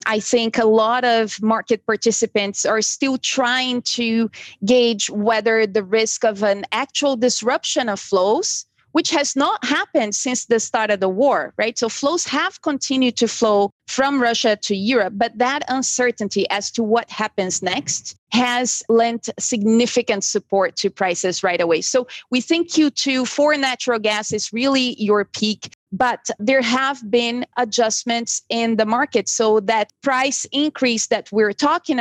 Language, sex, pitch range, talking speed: English, female, 215-255 Hz, 155 wpm